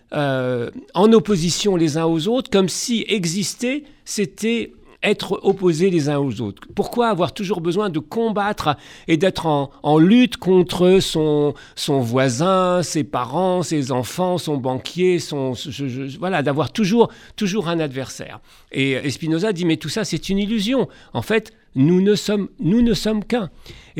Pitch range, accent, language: 140-205 Hz, French, French